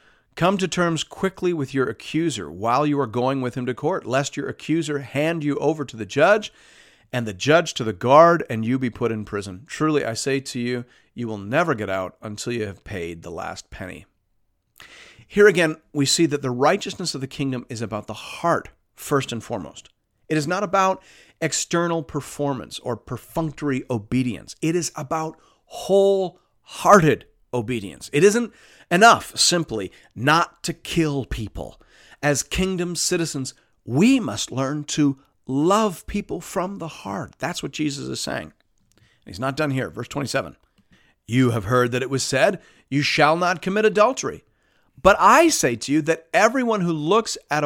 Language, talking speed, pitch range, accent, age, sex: English, 170 wpm, 125-170 Hz, American, 40-59, male